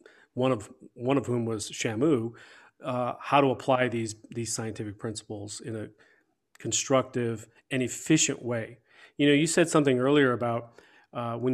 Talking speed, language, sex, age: 155 wpm, English, male, 40-59